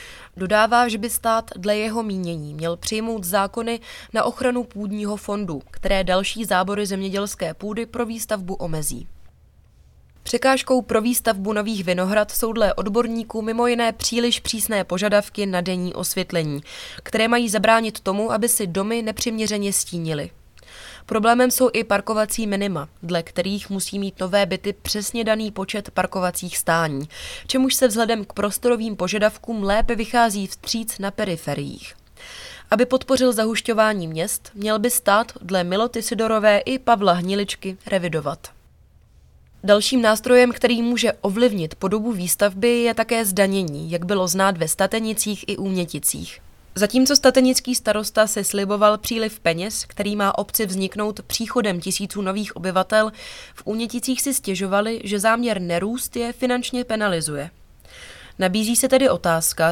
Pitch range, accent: 190-230 Hz, native